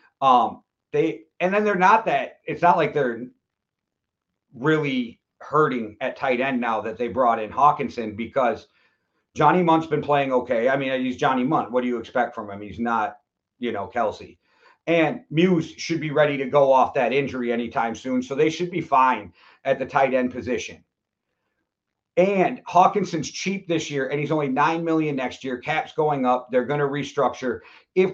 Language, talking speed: English, 185 wpm